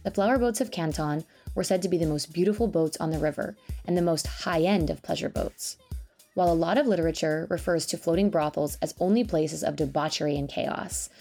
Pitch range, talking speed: 155-200 Hz, 210 wpm